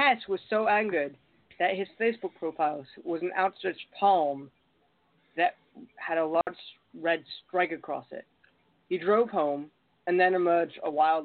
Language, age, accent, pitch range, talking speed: English, 40-59, American, 150-195 Hz, 150 wpm